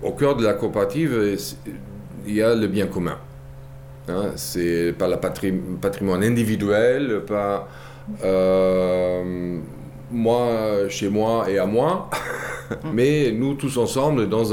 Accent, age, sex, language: French, 40-59, male, French